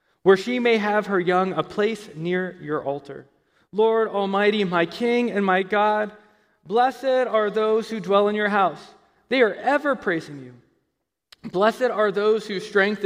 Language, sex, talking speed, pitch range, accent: English, male, 165 wpm, 175-225 Hz, American